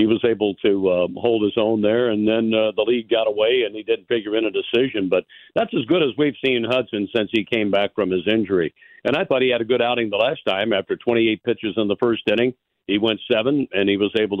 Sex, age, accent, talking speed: male, 60-79, American, 265 wpm